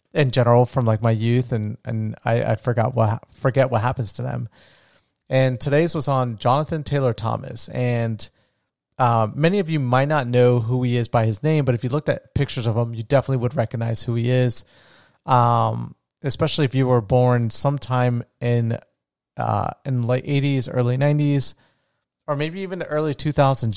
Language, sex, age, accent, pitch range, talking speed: English, male, 30-49, American, 115-140 Hz, 185 wpm